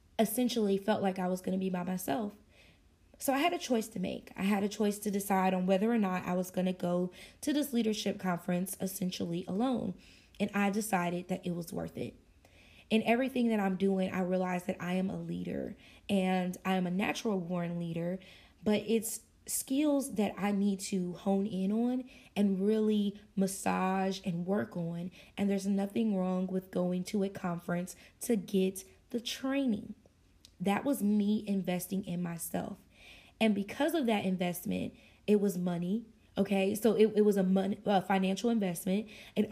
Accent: American